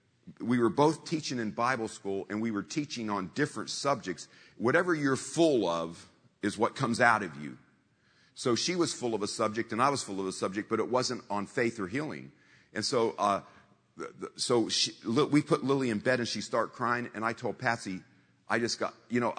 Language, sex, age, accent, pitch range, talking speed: English, male, 50-69, American, 100-125 Hz, 215 wpm